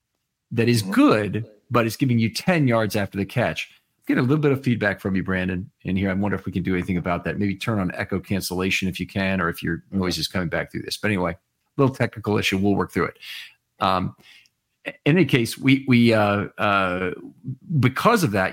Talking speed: 230 wpm